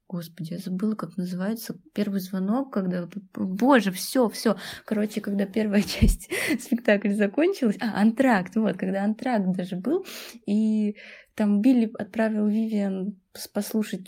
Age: 20-39